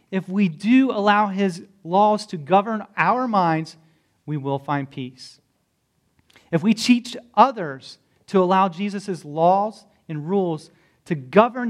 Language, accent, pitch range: English, American, 145-205 Hz